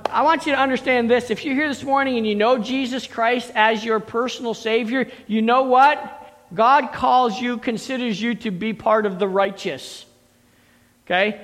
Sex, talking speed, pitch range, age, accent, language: male, 185 wpm, 220-270 Hz, 50-69, American, English